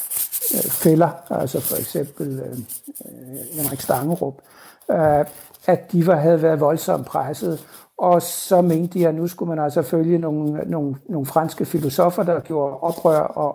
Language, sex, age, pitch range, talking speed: Danish, male, 60-79, 145-170 Hz, 150 wpm